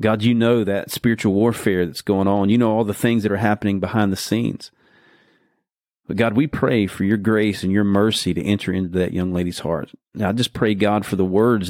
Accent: American